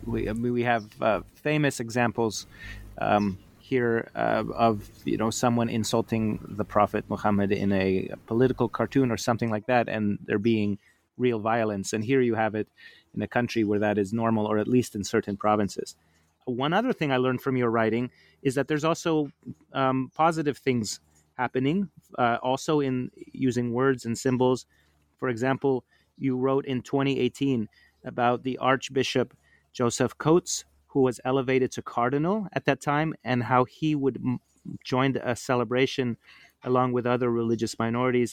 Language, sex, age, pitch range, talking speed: English, male, 30-49, 110-130 Hz, 170 wpm